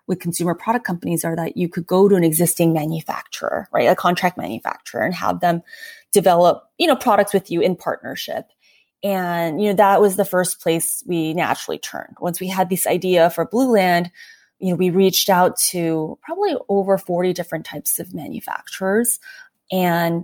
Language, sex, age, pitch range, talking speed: English, female, 20-39, 170-210 Hz, 180 wpm